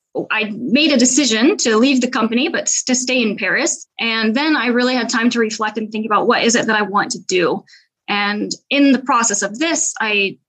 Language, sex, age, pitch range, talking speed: English, female, 20-39, 215-255 Hz, 225 wpm